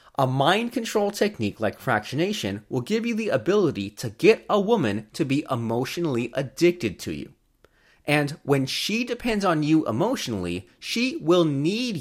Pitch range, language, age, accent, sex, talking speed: 115-190 Hz, English, 30-49, American, male, 155 wpm